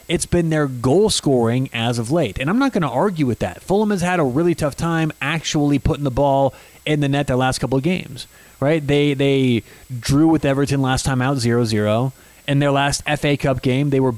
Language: English